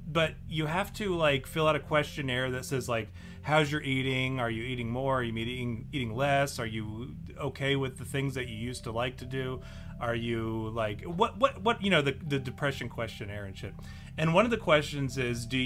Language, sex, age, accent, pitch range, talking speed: English, male, 30-49, American, 115-155 Hz, 220 wpm